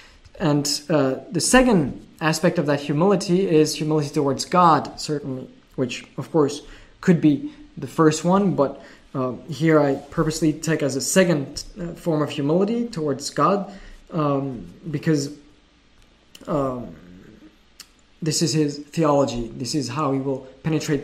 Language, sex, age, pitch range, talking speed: English, male, 20-39, 140-165 Hz, 140 wpm